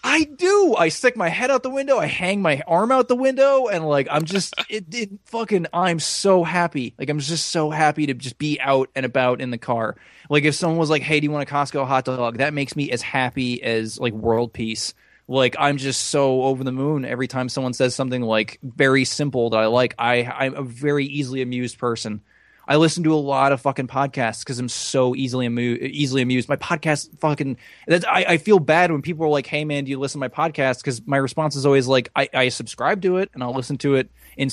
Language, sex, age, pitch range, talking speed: English, male, 20-39, 130-165 Hz, 240 wpm